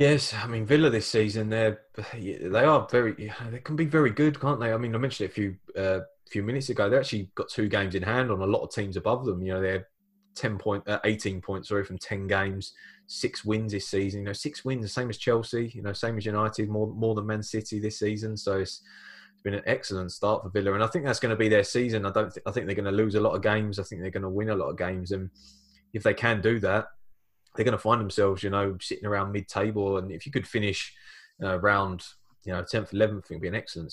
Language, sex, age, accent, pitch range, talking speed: English, male, 20-39, British, 95-110 Hz, 270 wpm